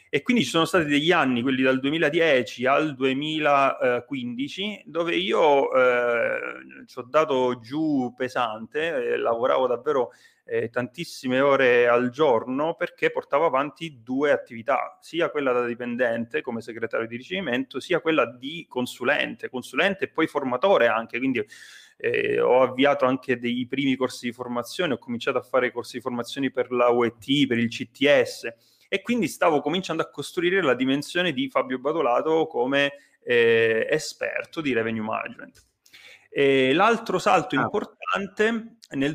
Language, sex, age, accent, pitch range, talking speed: Italian, male, 30-49, native, 120-175 Hz, 145 wpm